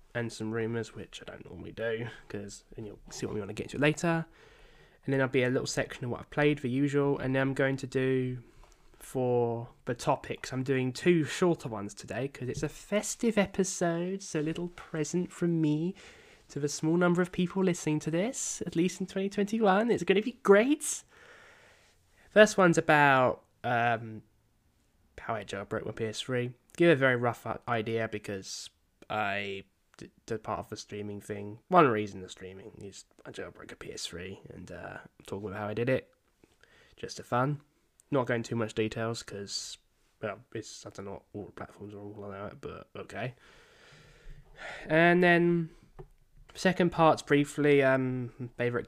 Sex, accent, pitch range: male, British, 110-165 Hz